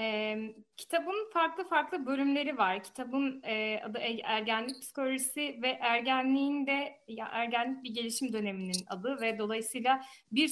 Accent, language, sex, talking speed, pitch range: native, Turkish, female, 130 wpm, 215-260 Hz